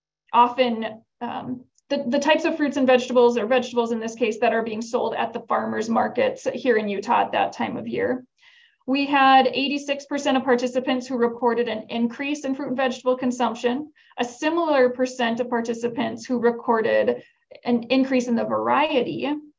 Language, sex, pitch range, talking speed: English, female, 235-270 Hz, 170 wpm